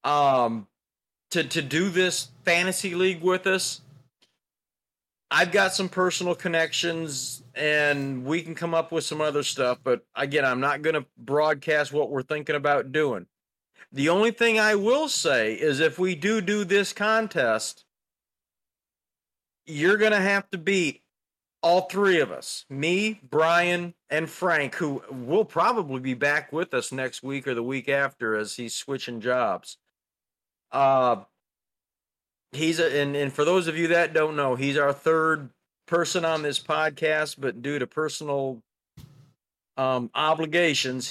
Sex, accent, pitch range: male, American, 135-180 Hz